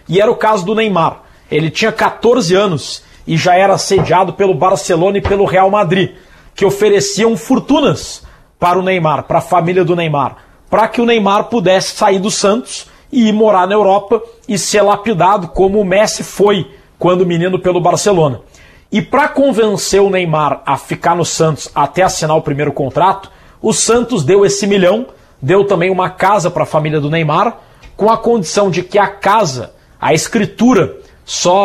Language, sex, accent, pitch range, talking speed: Portuguese, male, Brazilian, 180-215 Hz, 175 wpm